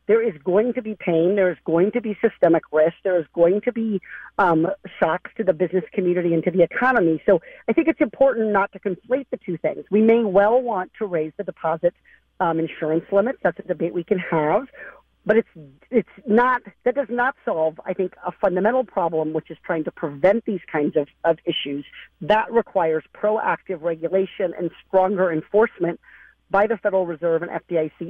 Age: 50-69